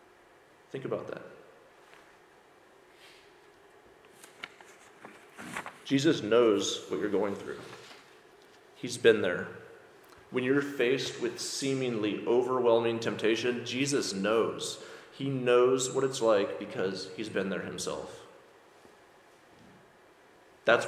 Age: 30-49